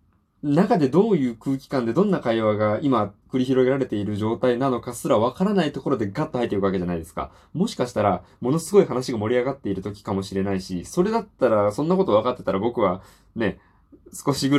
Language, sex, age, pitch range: Japanese, male, 20-39, 95-140 Hz